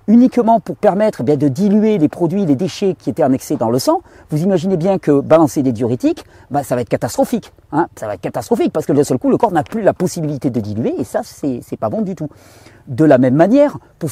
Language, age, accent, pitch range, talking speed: French, 40-59, French, 150-230 Hz, 245 wpm